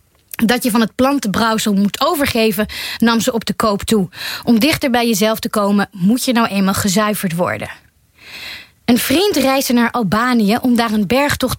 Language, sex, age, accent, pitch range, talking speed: Dutch, female, 20-39, Dutch, 205-255 Hz, 175 wpm